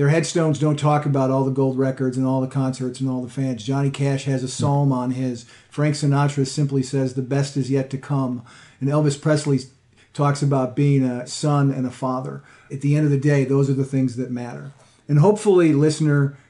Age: 40-59